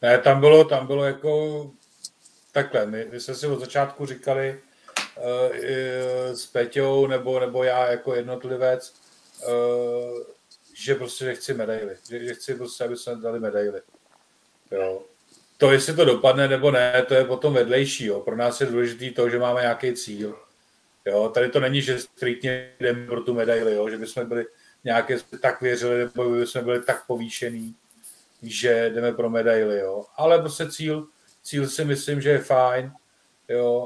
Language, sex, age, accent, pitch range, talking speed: Czech, male, 40-59, native, 120-135 Hz, 170 wpm